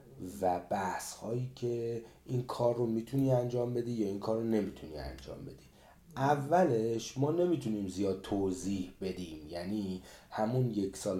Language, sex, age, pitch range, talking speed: Persian, male, 30-49, 95-130 Hz, 145 wpm